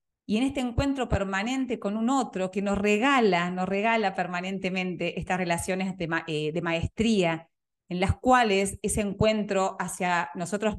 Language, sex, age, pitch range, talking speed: Spanish, female, 30-49, 180-230 Hz, 155 wpm